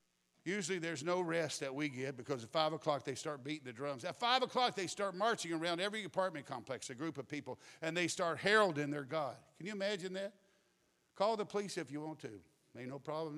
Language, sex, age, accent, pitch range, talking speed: English, male, 50-69, American, 145-195 Hz, 225 wpm